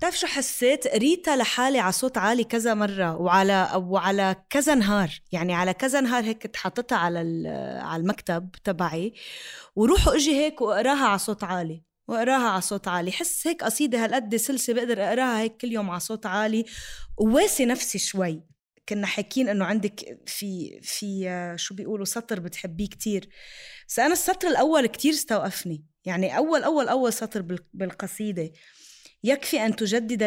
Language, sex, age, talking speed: English, female, 20-39, 150 wpm